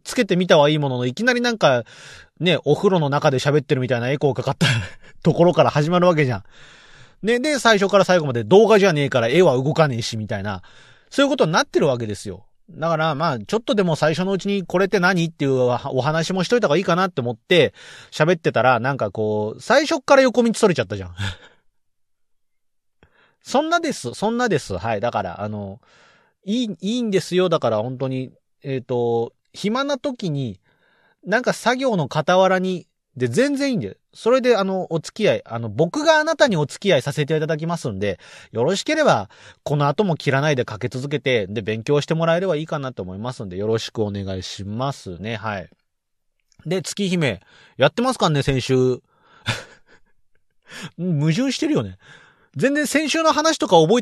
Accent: native